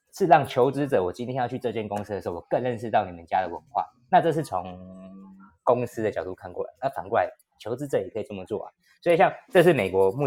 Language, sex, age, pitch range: Chinese, male, 20-39, 100-140 Hz